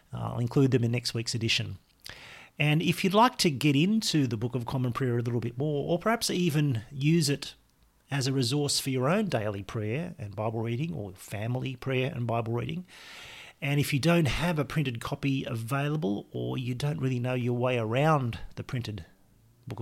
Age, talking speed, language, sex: 40-59, 195 wpm, English, male